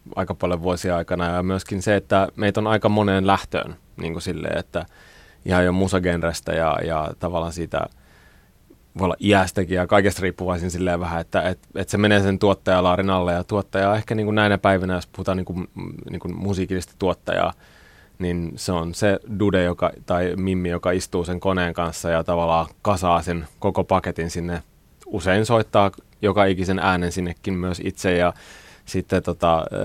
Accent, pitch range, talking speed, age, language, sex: native, 85-100 Hz, 165 wpm, 30-49, Finnish, male